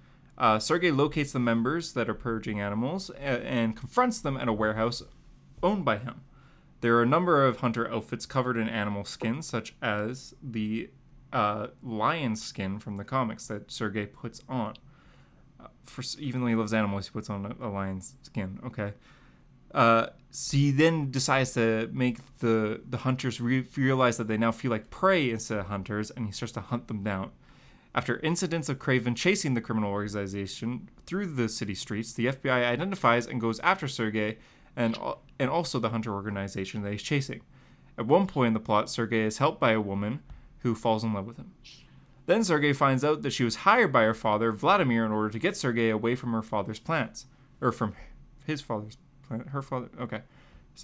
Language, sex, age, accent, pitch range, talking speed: English, male, 20-39, American, 110-130 Hz, 190 wpm